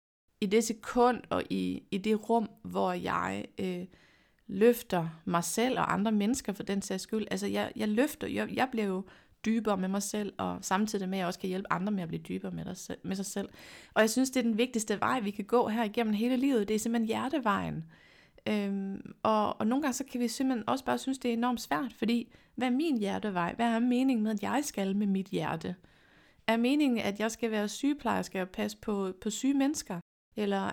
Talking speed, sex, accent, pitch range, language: 225 wpm, female, native, 190-235 Hz, Danish